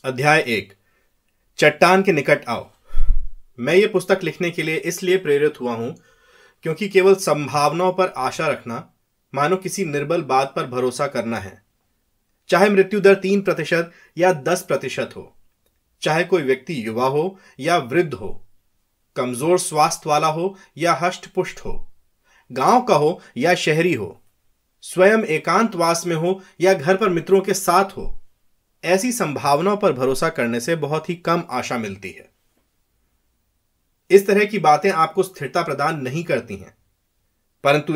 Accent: Indian